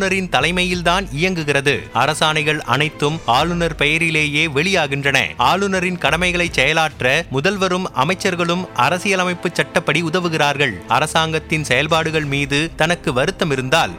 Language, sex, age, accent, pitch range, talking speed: Tamil, male, 30-49, native, 150-180 Hz, 90 wpm